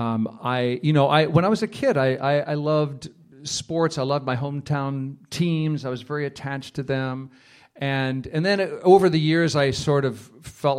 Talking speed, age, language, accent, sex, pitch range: 205 wpm, 40-59, English, American, male, 130-160 Hz